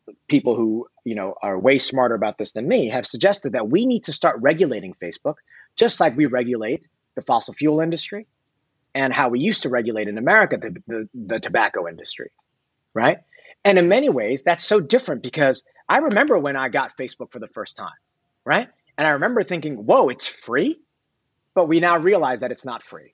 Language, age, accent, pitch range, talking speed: English, 30-49, American, 125-165 Hz, 195 wpm